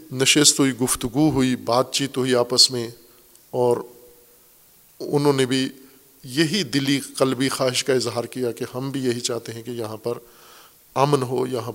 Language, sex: Urdu, male